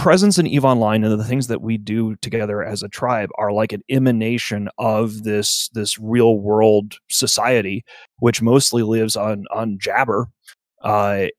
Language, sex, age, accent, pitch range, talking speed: English, male, 30-49, American, 110-135 Hz, 175 wpm